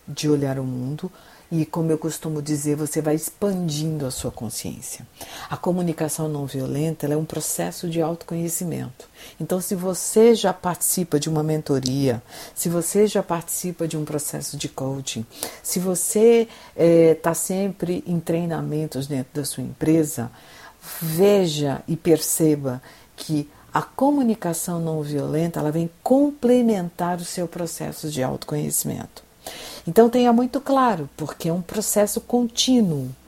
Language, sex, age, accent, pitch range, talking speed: Portuguese, female, 50-69, Brazilian, 150-190 Hz, 140 wpm